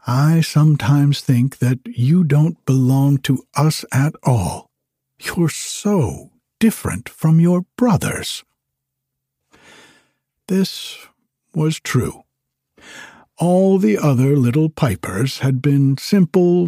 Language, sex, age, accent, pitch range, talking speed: English, male, 60-79, American, 120-155 Hz, 100 wpm